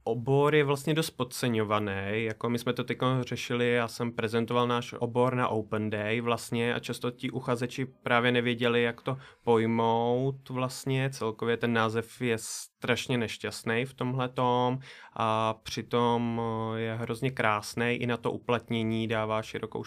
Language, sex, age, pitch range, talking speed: Czech, male, 20-39, 115-125 Hz, 150 wpm